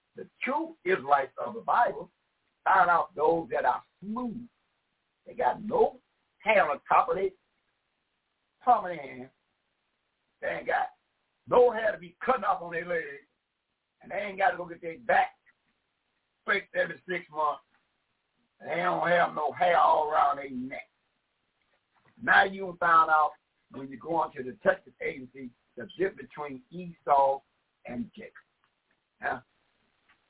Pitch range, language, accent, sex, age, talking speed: 150-235 Hz, English, American, male, 60-79, 145 wpm